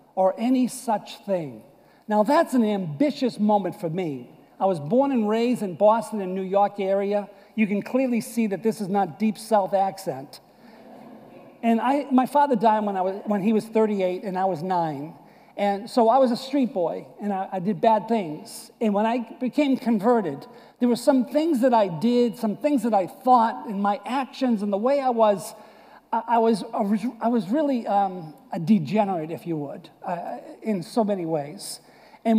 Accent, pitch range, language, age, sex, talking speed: American, 200-255 Hz, English, 50-69, male, 195 wpm